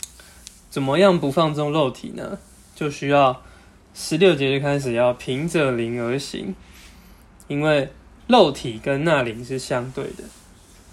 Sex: male